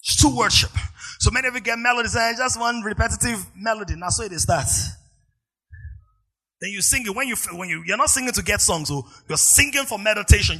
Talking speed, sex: 220 wpm, male